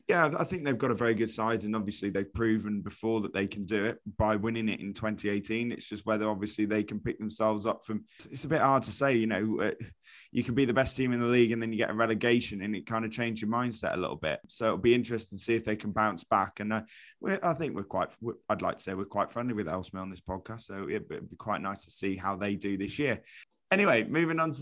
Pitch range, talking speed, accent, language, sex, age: 100-120 Hz, 280 wpm, British, English, male, 20-39